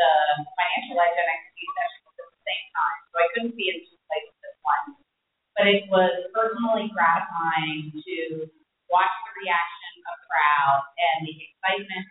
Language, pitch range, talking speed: English, 165-235 Hz, 165 wpm